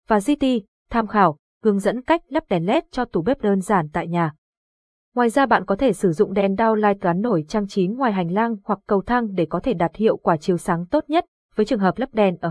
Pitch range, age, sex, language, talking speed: 185-235 Hz, 20-39, female, Vietnamese, 245 wpm